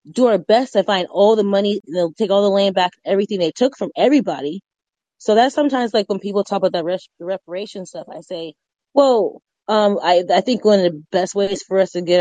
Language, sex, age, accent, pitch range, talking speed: English, female, 20-39, American, 185-225 Hz, 225 wpm